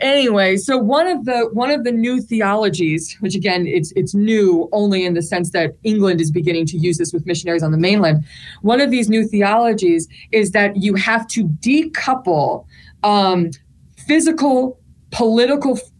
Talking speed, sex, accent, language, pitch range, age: 170 wpm, female, American, English, 190-245 Hz, 20-39